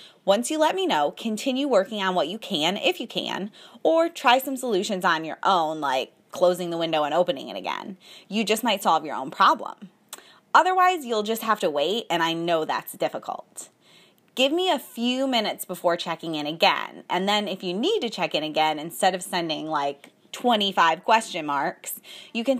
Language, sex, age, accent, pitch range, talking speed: English, female, 20-39, American, 180-255 Hz, 195 wpm